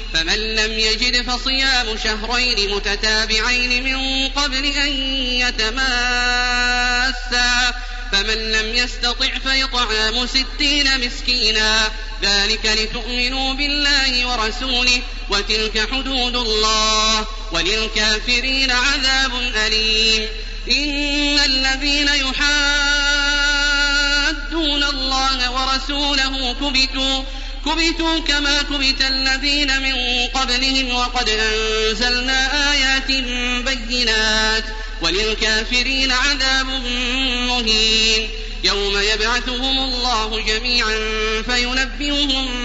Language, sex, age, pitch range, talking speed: Arabic, male, 30-49, 220-265 Hz, 70 wpm